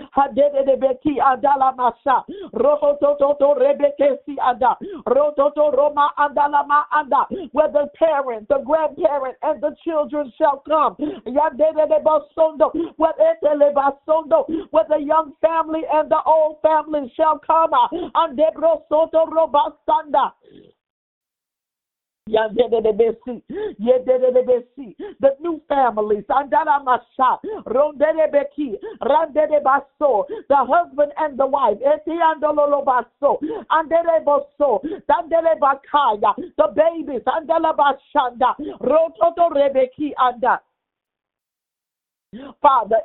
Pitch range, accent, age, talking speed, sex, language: 275-315 Hz, American, 50-69, 100 wpm, female, English